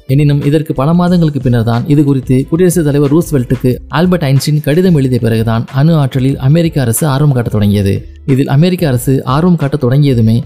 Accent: native